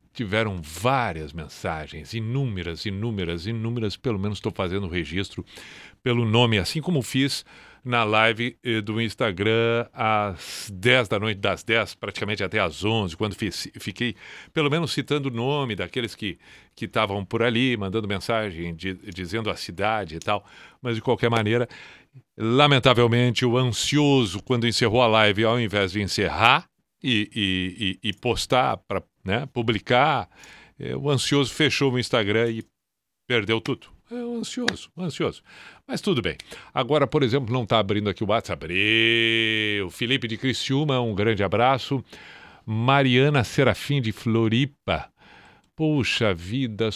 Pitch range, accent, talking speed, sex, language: 105-130 Hz, Brazilian, 145 wpm, male, Portuguese